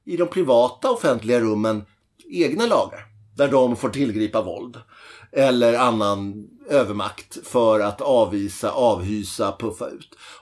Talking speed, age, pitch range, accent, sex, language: 120 wpm, 30-49, 100-130 Hz, native, male, Swedish